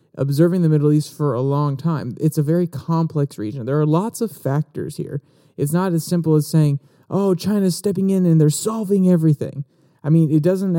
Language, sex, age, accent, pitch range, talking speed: English, male, 30-49, American, 140-165 Hz, 205 wpm